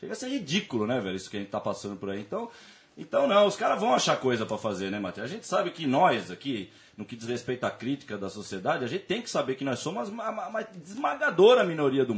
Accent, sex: Brazilian, male